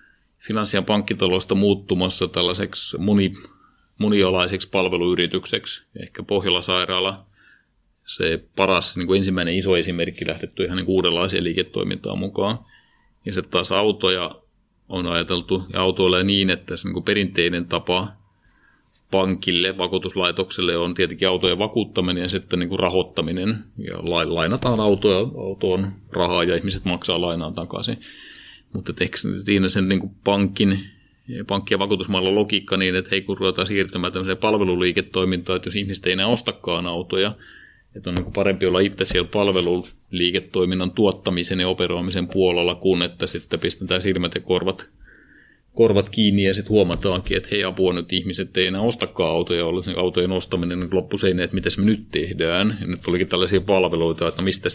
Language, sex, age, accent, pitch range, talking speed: Finnish, male, 30-49, native, 90-95 Hz, 145 wpm